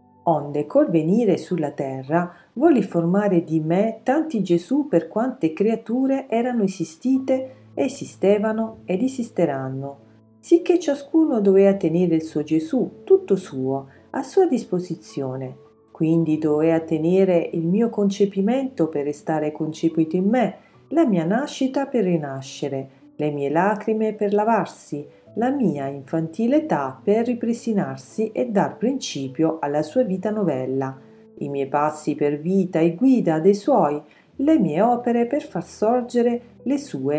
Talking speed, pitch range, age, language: 130 wpm, 150-230 Hz, 40-59, Italian